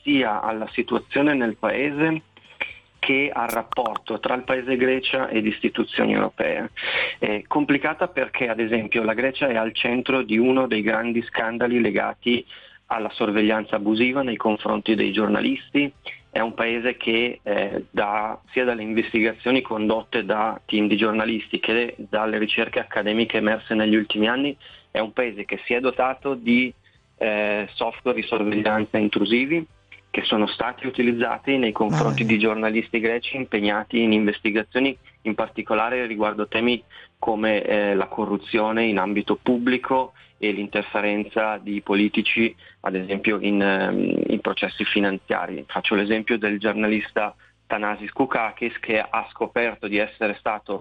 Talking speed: 140 wpm